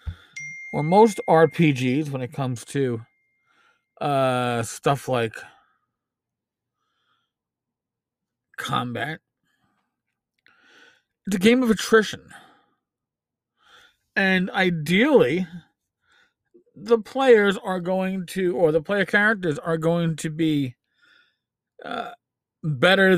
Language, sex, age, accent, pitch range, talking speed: English, male, 40-59, American, 155-230 Hz, 85 wpm